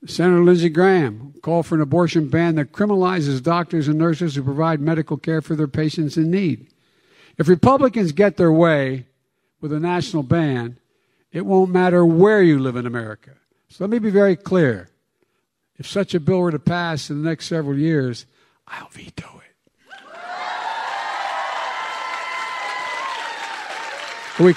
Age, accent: 60-79, American